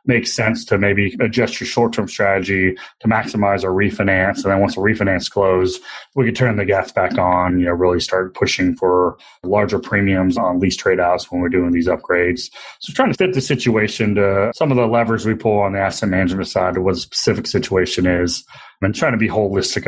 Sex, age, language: male, 30-49, English